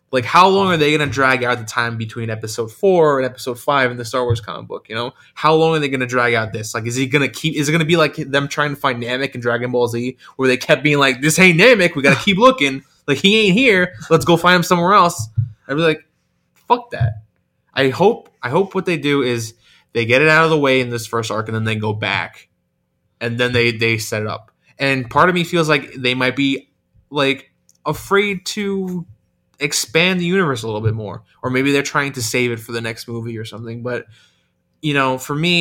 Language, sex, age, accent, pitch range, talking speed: English, male, 20-39, American, 115-150 Hz, 245 wpm